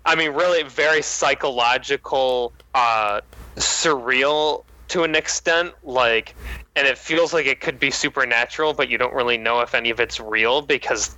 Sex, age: male, 20-39